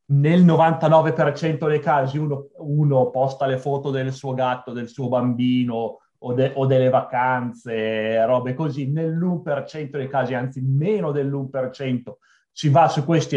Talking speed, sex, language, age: 145 wpm, male, Italian, 30-49